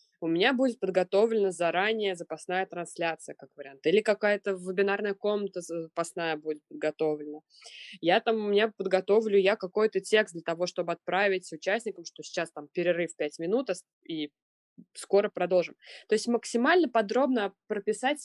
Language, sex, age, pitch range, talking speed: Russian, female, 20-39, 185-235 Hz, 140 wpm